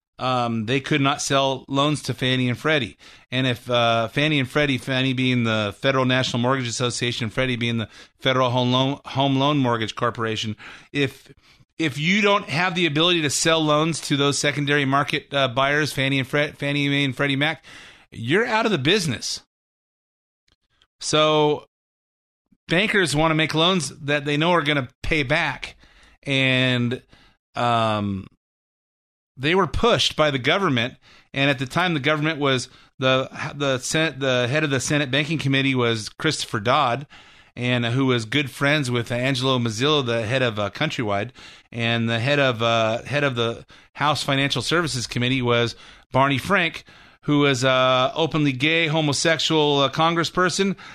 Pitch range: 125-150 Hz